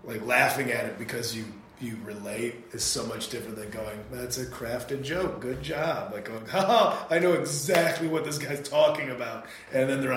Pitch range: 105-125 Hz